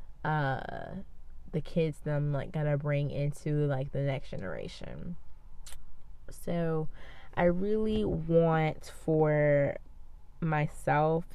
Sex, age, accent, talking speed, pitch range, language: female, 20-39, American, 100 wpm, 145-165 Hz, English